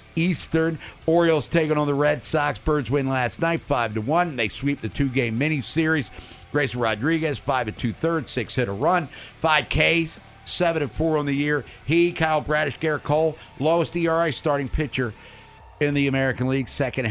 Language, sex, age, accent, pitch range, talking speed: English, male, 50-69, American, 115-165 Hz, 150 wpm